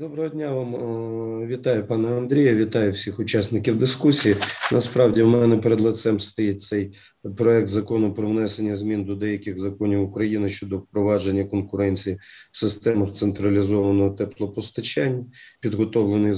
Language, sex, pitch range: Ukrainian, male, 100-115 Hz